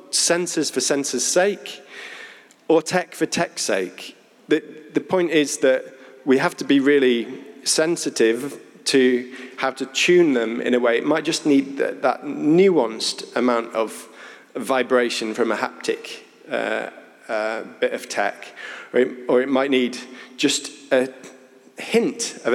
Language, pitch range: English, 125-165 Hz